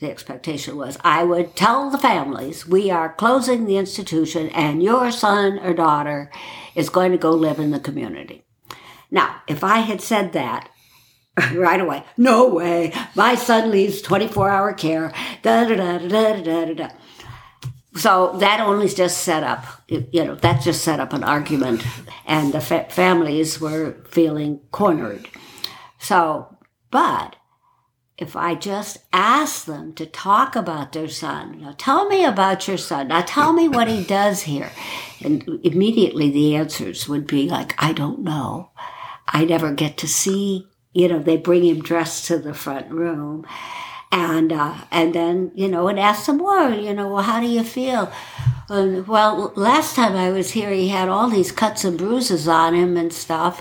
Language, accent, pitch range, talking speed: English, American, 160-210 Hz, 165 wpm